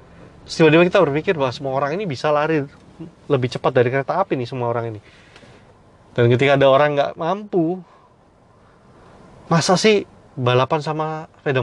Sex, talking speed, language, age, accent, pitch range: male, 150 wpm, Indonesian, 20-39, native, 105-145 Hz